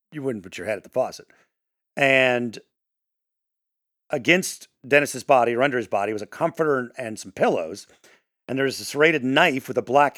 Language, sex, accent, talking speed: English, male, American, 175 wpm